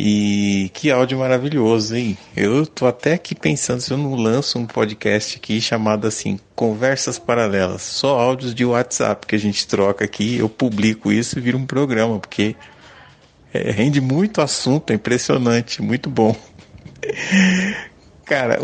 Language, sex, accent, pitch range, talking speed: English, male, Brazilian, 110-145 Hz, 150 wpm